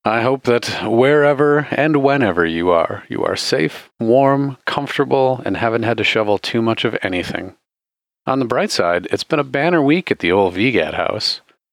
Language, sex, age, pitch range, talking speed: English, male, 40-59, 105-135 Hz, 185 wpm